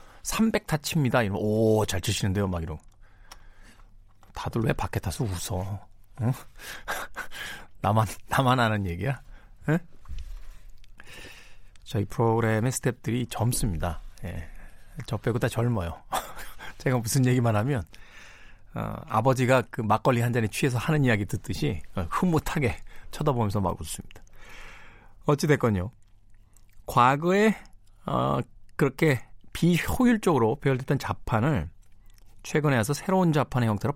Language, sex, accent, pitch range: Korean, male, native, 100-145 Hz